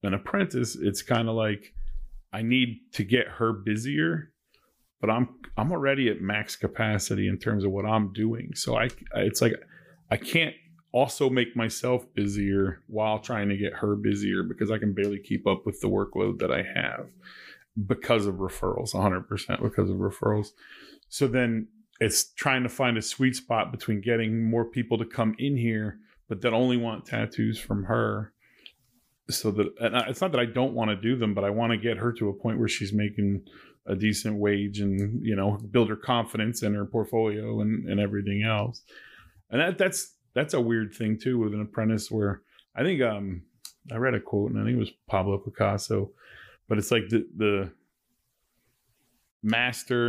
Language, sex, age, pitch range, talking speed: English, male, 30-49, 105-120 Hz, 185 wpm